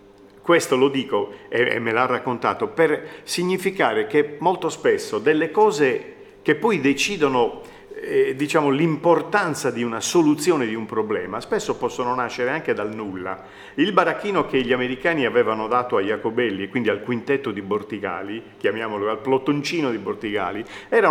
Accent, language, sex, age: native, Italian, male, 50-69